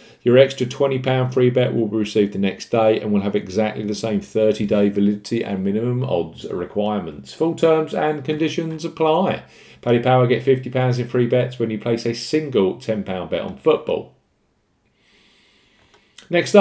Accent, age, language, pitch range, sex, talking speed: British, 40-59, English, 100-130 Hz, male, 165 wpm